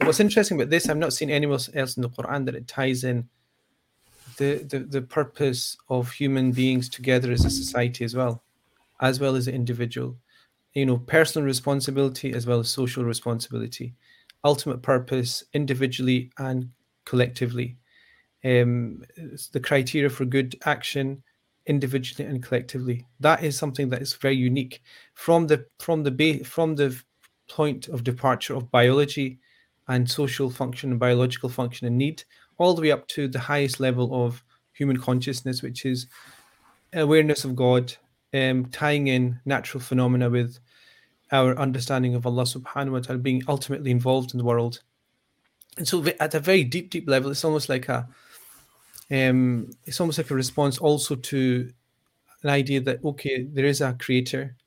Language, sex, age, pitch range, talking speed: English, male, 30-49, 125-145 Hz, 160 wpm